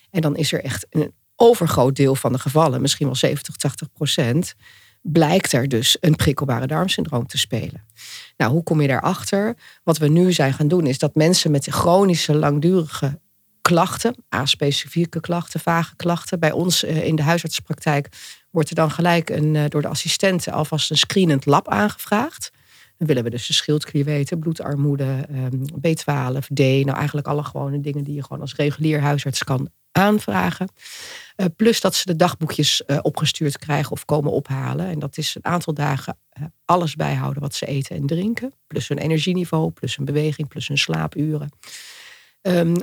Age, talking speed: 40-59, 170 wpm